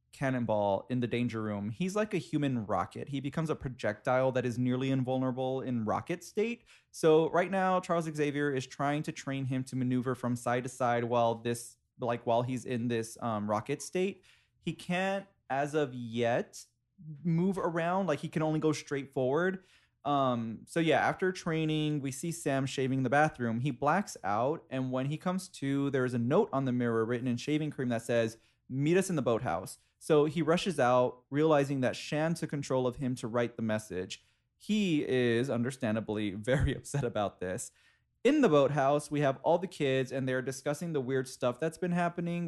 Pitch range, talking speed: 120-160 Hz, 190 wpm